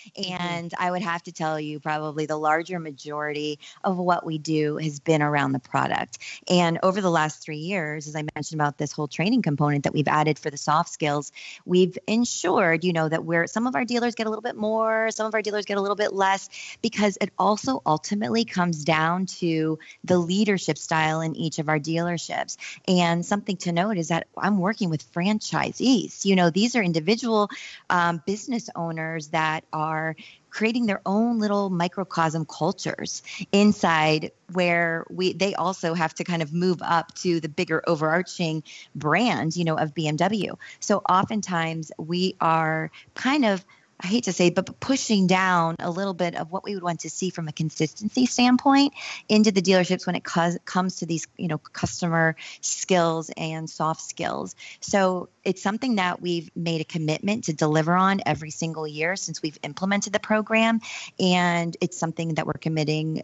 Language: English